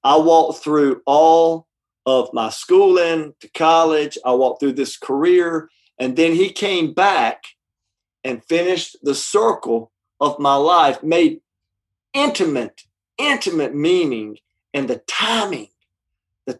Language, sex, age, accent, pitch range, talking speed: English, male, 50-69, American, 130-200 Hz, 125 wpm